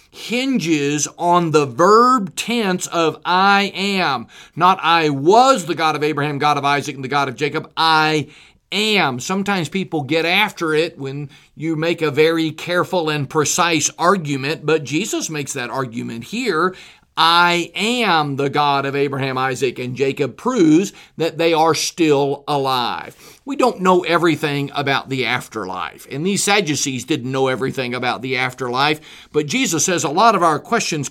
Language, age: English, 40-59